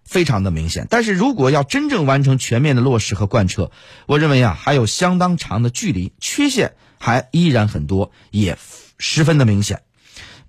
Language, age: Chinese, 30-49